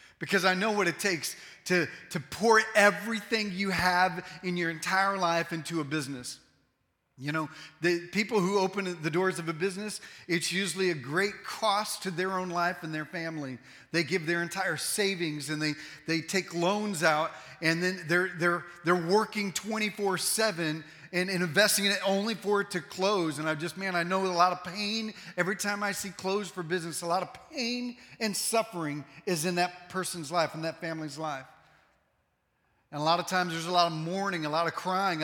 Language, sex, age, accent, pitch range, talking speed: English, male, 40-59, American, 155-190 Hz, 195 wpm